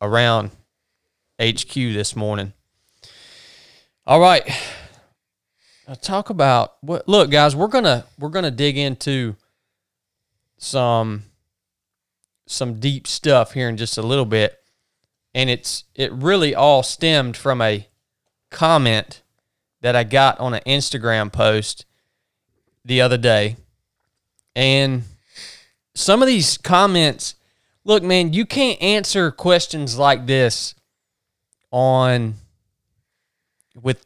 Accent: American